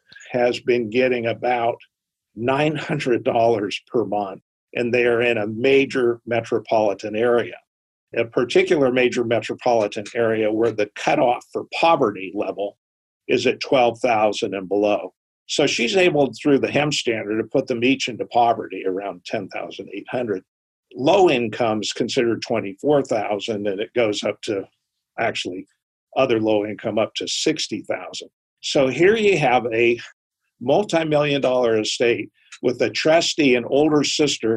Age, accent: 50-69, American